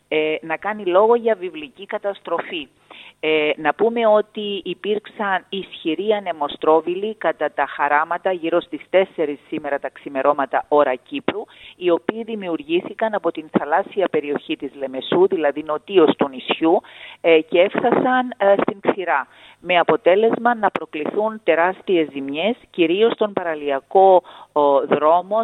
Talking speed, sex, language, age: 120 wpm, female, Greek, 40-59